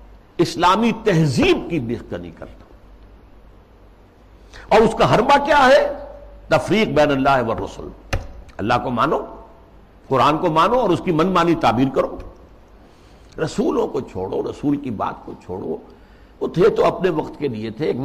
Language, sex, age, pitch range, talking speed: Urdu, male, 60-79, 100-170 Hz, 155 wpm